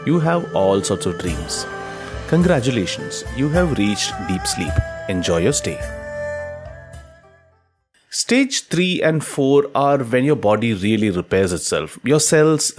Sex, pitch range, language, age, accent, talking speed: male, 110-165 Hz, English, 30-49, Indian, 130 wpm